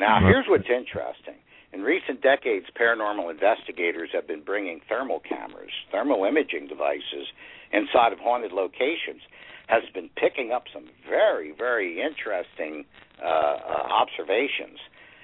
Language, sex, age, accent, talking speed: English, male, 60-79, American, 125 wpm